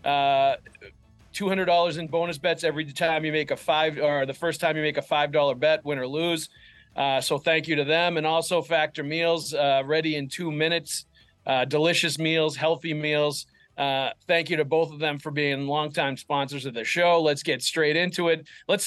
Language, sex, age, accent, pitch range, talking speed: English, male, 40-59, American, 140-170 Hz, 210 wpm